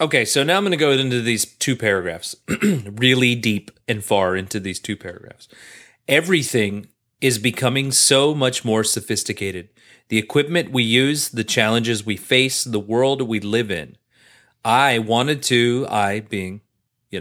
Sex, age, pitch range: male, 30-49, 105-130 Hz